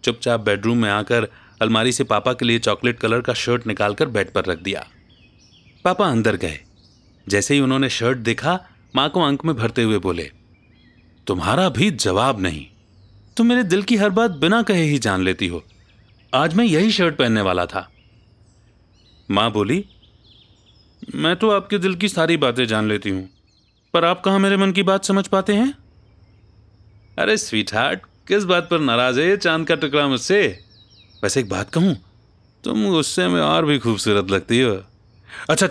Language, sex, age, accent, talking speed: Hindi, male, 30-49, native, 175 wpm